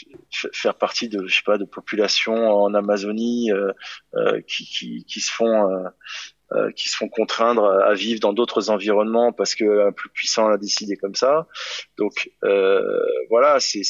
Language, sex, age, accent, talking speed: French, male, 20-39, French, 175 wpm